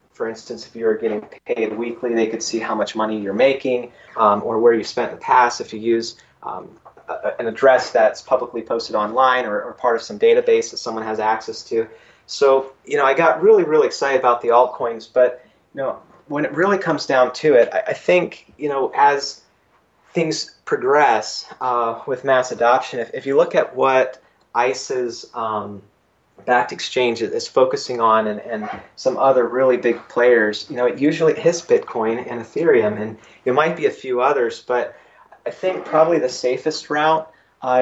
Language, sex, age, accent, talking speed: English, male, 30-49, American, 195 wpm